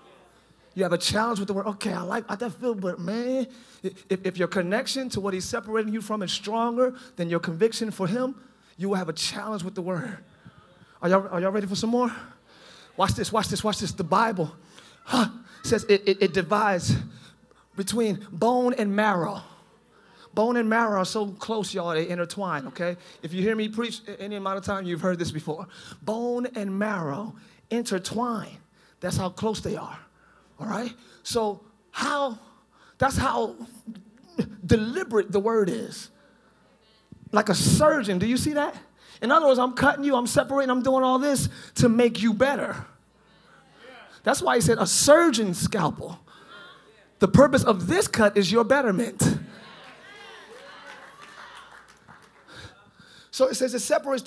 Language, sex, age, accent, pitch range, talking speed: English, male, 30-49, American, 190-245 Hz, 165 wpm